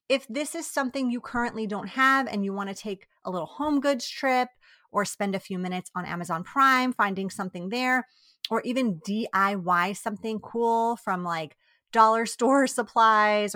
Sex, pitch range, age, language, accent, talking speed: female, 185-240 Hz, 30-49, English, American, 175 wpm